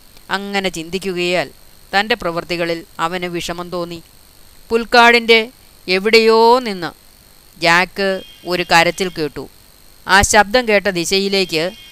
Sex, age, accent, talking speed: female, 30-49, native, 90 wpm